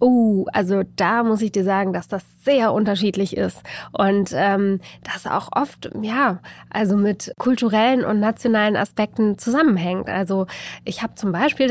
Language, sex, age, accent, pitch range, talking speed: German, female, 20-39, German, 200-245 Hz, 160 wpm